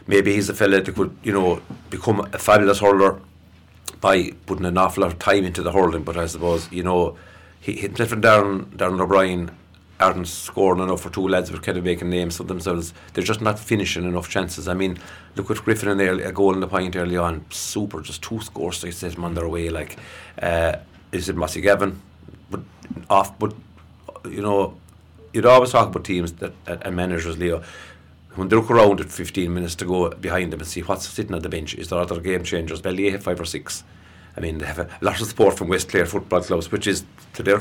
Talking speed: 230 wpm